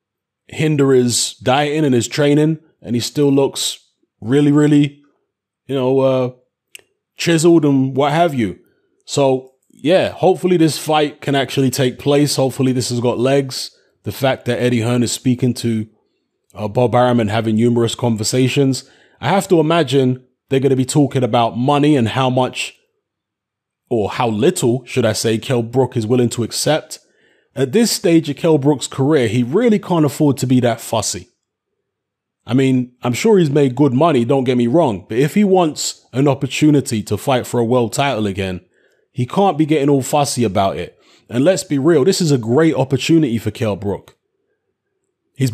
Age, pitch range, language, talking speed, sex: 20-39, 120-150 Hz, English, 180 wpm, male